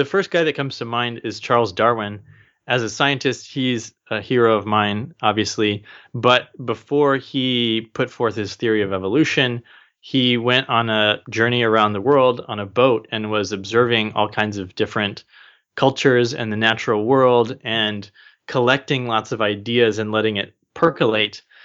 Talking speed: 165 wpm